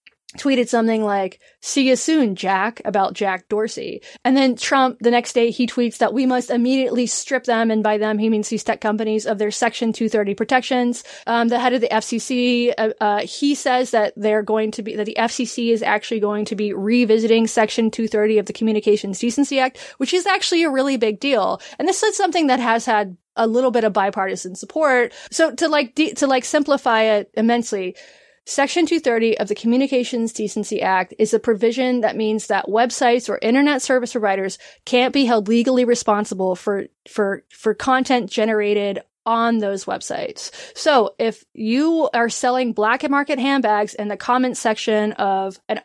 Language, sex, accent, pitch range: English, female, American, 215-255 Hz